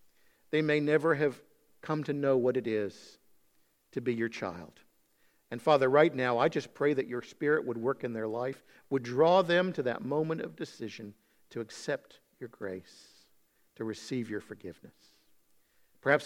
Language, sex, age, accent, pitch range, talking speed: English, male, 50-69, American, 115-155 Hz, 170 wpm